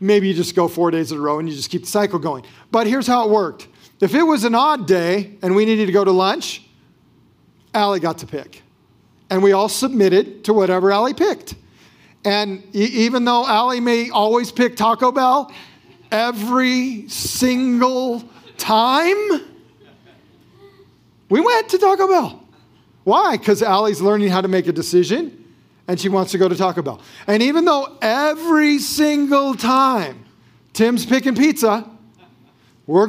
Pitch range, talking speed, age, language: 200-255 Hz, 165 wpm, 40-59, English